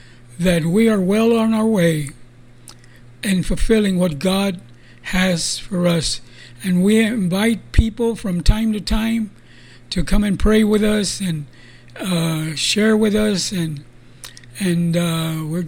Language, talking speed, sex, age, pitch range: English, 140 wpm, male, 60-79, 155-205 Hz